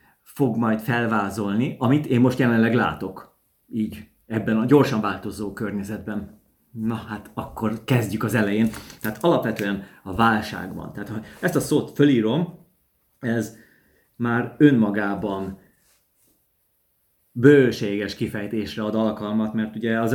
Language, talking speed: Hungarian, 120 wpm